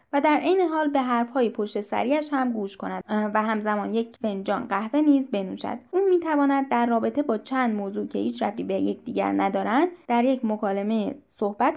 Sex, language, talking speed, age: female, Persian, 195 wpm, 10-29